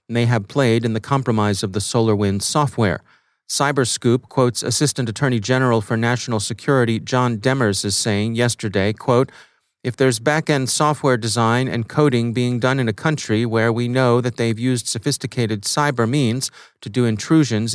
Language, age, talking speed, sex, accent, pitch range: English, 40-59, 165 wpm, male, American, 110-130 Hz